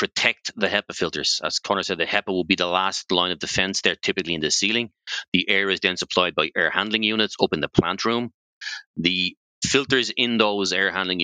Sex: male